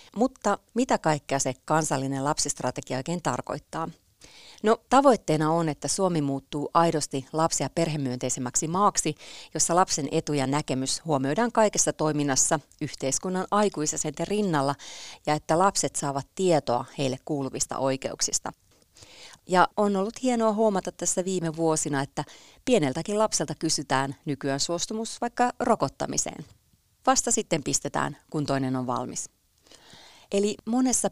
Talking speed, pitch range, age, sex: 120 wpm, 135-185 Hz, 30-49, female